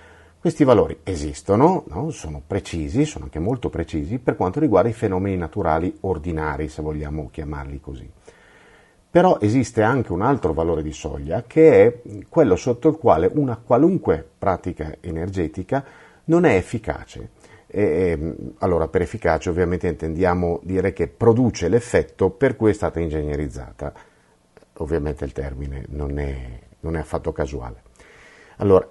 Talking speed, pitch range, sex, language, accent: 135 wpm, 80-100 Hz, male, Italian, native